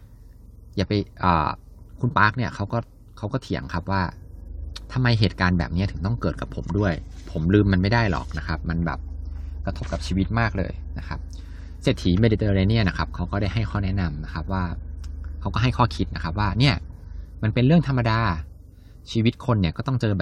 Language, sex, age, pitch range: Thai, male, 20-39, 85-110 Hz